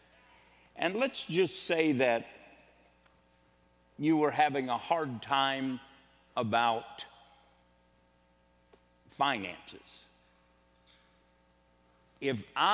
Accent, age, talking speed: American, 50-69, 65 wpm